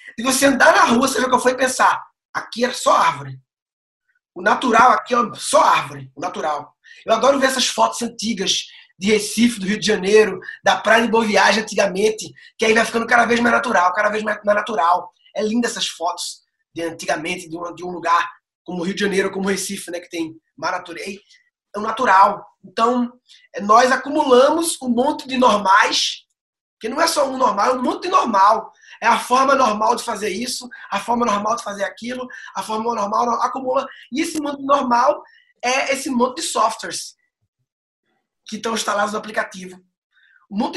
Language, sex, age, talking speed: Portuguese, male, 20-39, 195 wpm